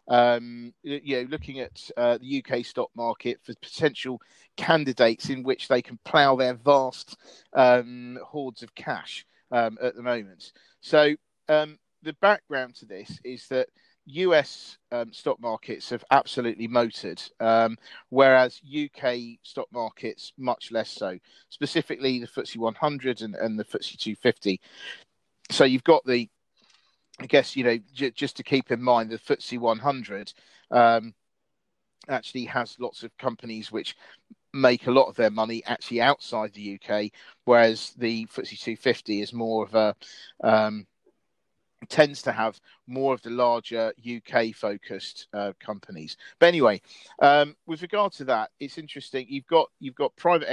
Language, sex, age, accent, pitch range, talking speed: English, male, 40-59, British, 115-135 Hz, 150 wpm